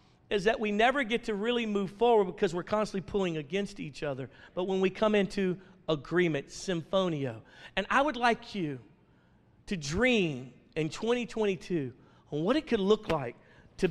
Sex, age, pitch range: male, 50-69, 170-225 Hz